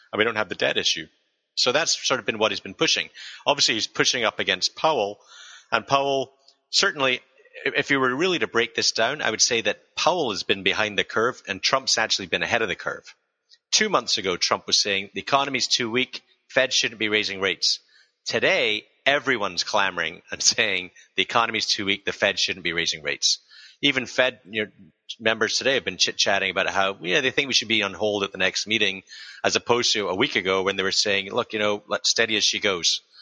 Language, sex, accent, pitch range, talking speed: English, male, American, 100-125 Hz, 215 wpm